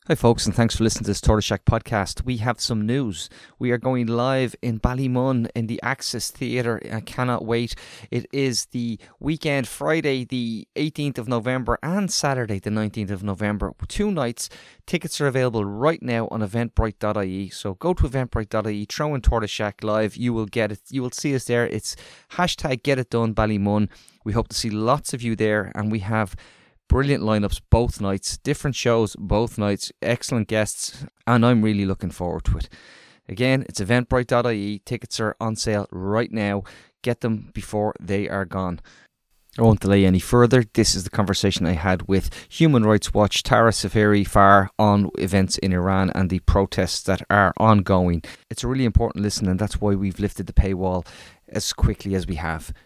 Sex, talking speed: male, 185 wpm